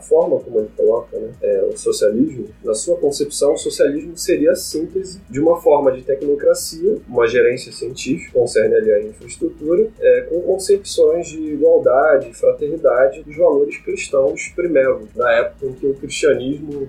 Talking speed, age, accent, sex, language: 155 wpm, 20-39, Brazilian, male, Portuguese